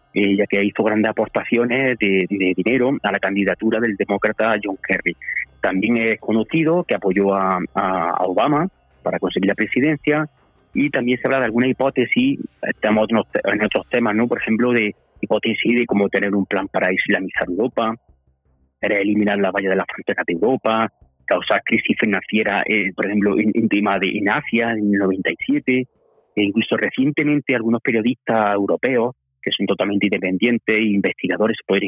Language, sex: Spanish, male